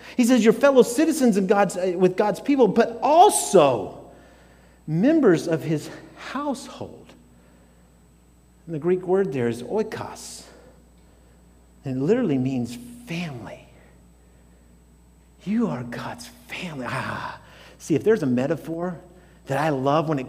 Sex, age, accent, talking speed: male, 50-69, American, 125 wpm